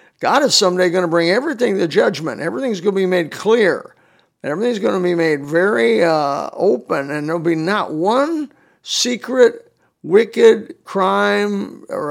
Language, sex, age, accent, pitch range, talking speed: English, male, 50-69, American, 155-200 Hz, 160 wpm